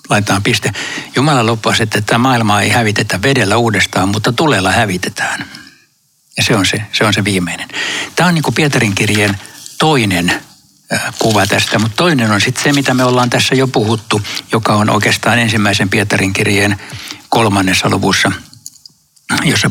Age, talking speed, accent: 60-79, 150 wpm, native